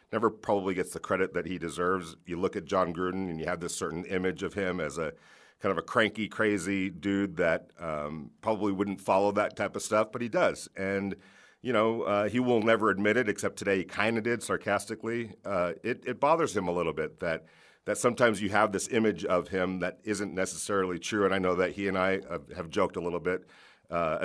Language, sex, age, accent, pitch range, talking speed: English, male, 50-69, American, 90-115 Hz, 230 wpm